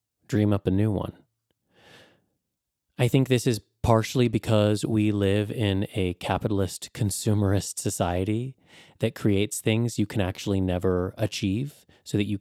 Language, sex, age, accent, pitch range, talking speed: English, male, 30-49, American, 100-125 Hz, 140 wpm